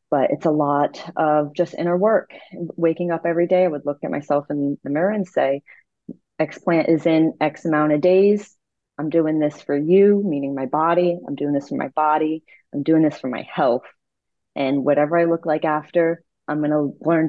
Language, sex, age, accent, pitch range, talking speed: English, female, 30-49, American, 140-165 Hz, 205 wpm